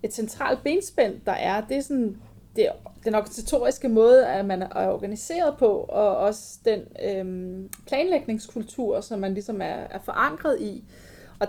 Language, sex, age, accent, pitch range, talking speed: Danish, female, 30-49, native, 205-255 Hz, 160 wpm